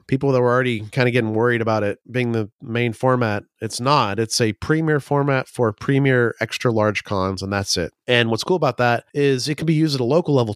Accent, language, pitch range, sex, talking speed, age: American, English, 105-135 Hz, male, 240 wpm, 30-49